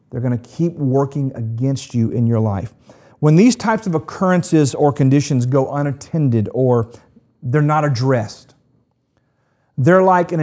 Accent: American